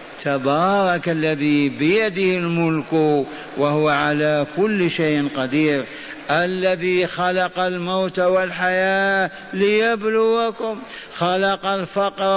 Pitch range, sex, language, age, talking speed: 165-200 Hz, male, Arabic, 50-69, 80 wpm